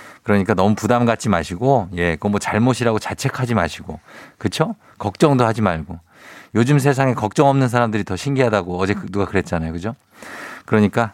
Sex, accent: male, native